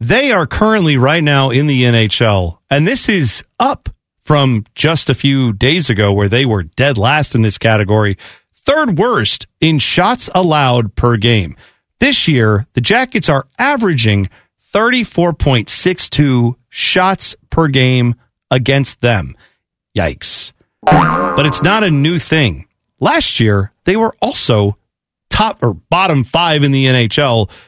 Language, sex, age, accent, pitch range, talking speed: English, male, 40-59, American, 115-170 Hz, 140 wpm